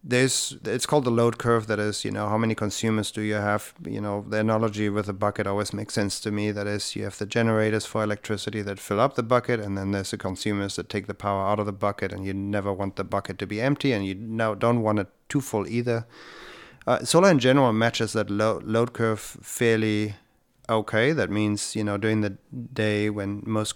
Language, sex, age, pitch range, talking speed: English, male, 30-49, 100-115 Hz, 230 wpm